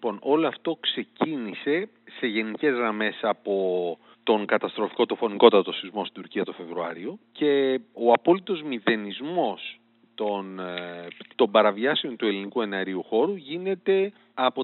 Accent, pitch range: native, 100-170 Hz